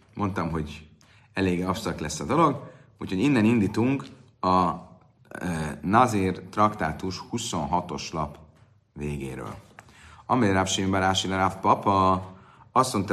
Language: Hungarian